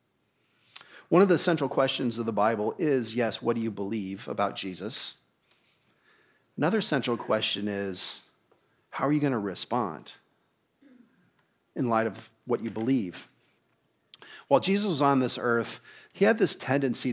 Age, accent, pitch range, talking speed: 40-59, American, 120-145 Hz, 145 wpm